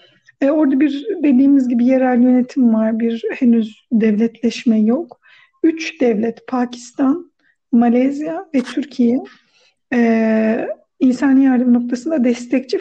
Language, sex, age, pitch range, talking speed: Turkish, female, 50-69, 245-320 Hz, 105 wpm